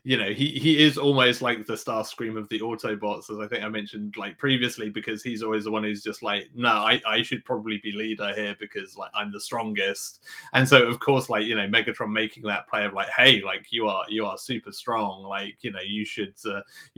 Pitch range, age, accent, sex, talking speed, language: 105-135 Hz, 30-49, British, male, 240 wpm, English